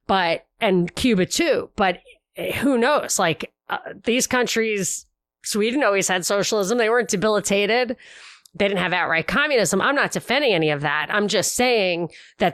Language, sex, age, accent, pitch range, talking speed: English, female, 30-49, American, 170-230 Hz, 160 wpm